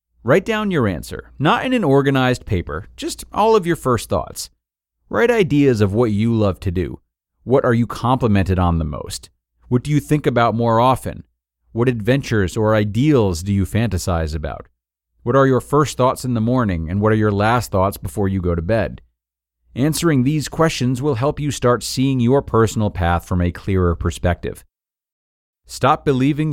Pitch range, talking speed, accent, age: 90-130 Hz, 185 wpm, American, 40-59